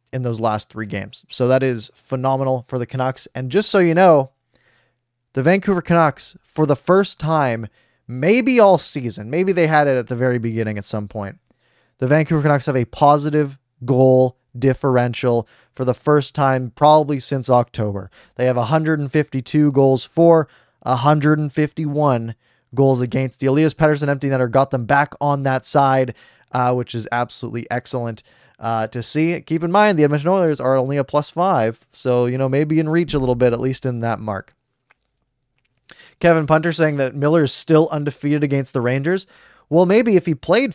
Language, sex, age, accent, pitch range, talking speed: English, male, 20-39, American, 125-155 Hz, 180 wpm